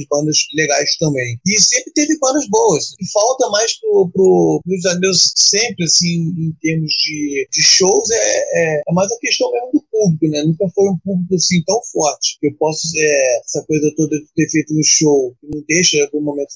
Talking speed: 195 wpm